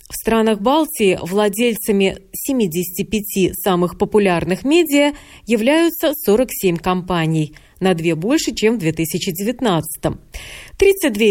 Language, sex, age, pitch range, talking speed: Russian, female, 30-49, 185-260 Hz, 95 wpm